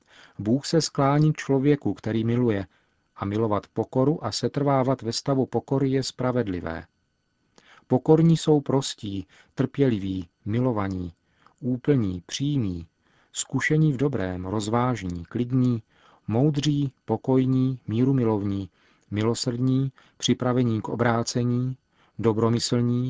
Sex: male